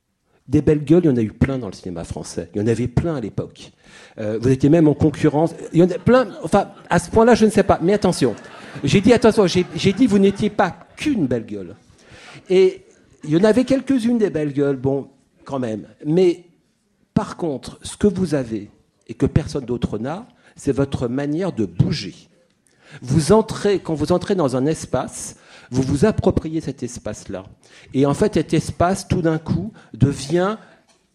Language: French